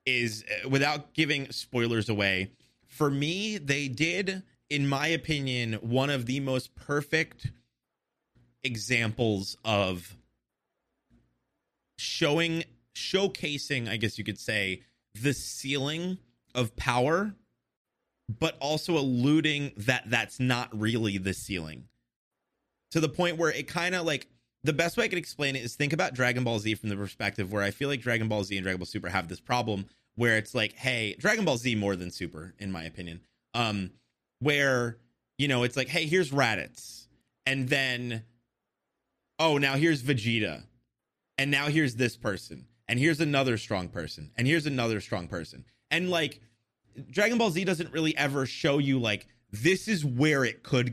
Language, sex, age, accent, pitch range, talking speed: English, male, 30-49, American, 110-150 Hz, 160 wpm